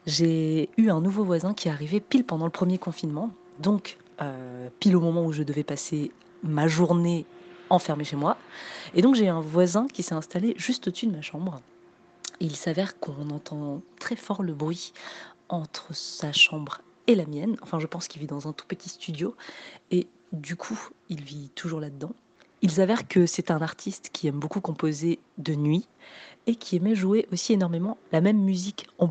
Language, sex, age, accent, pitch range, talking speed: French, female, 30-49, French, 160-190 Hz, 190 wpm